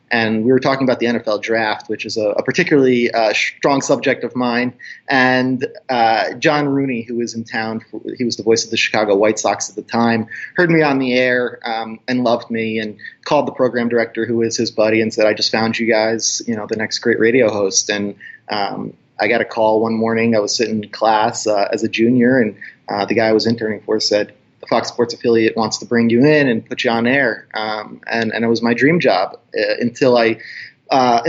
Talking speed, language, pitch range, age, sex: 230 wpm, English, 110-130 Hz, 30-49, male